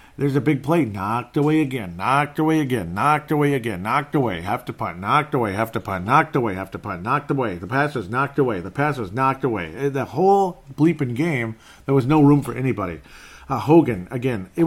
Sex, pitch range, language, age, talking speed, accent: male, 105-140 Hz, English, 50-69, 225 wpm, American